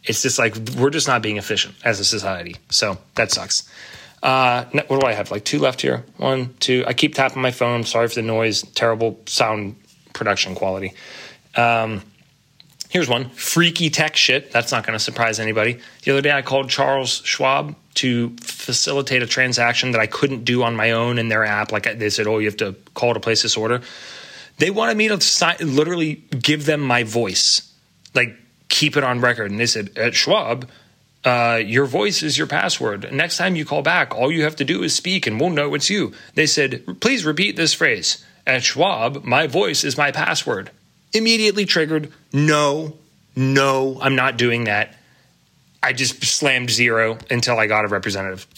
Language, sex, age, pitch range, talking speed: English, male, 30-49, 110-145 Hz, 190 wpm